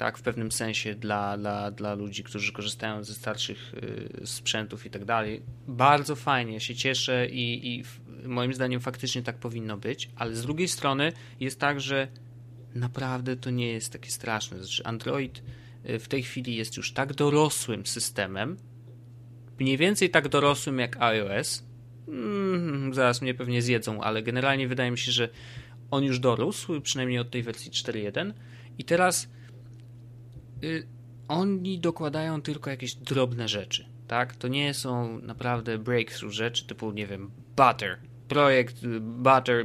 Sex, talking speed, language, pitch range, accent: male, 150 wpm, Polish, 120-135 Hz, native